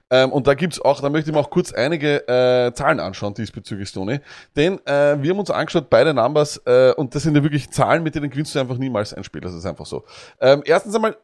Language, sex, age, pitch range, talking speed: German, male, 20-39, 125-160 Hz, 250 wpm